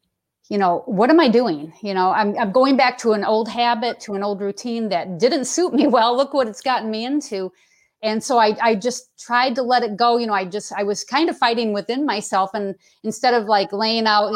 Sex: female